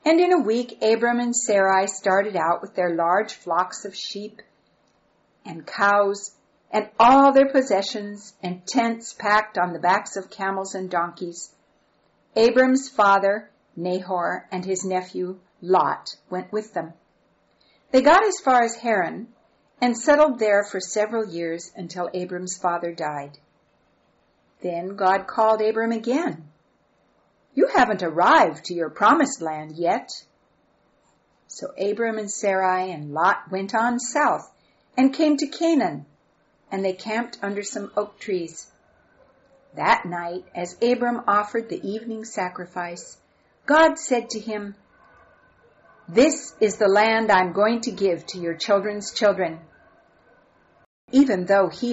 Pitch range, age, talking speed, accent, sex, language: 180-230 Hz, 50-69, 135 wpm, American, female, English